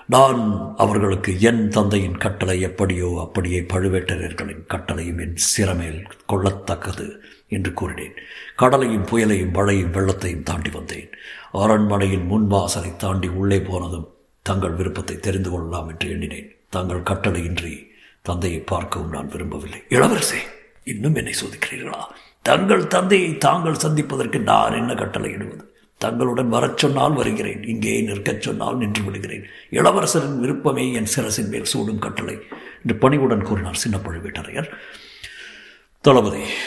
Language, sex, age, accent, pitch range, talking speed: Tamil, male, 60-79, native, 90-115 Hz, 115 wpm